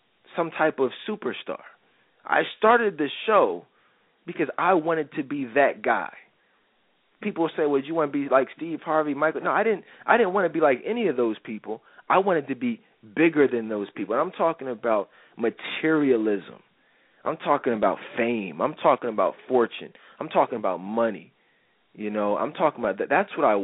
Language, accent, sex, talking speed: English, American, male, 190 wpm